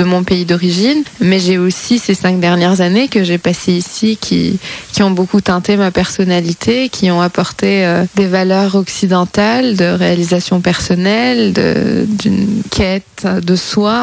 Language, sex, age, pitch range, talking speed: French, female, 20-39, 180-215 Hz, 160 wpm